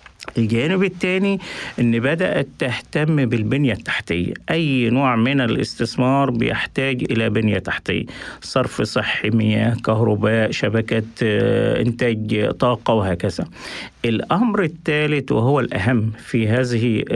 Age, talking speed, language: 50-69, 100 wpm, Arabic